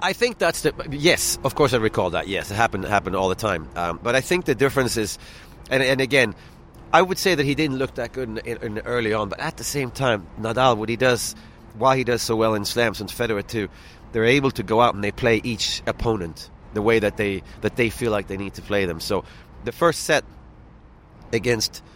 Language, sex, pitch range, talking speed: English, male, 110-140 Hz, 245 wpm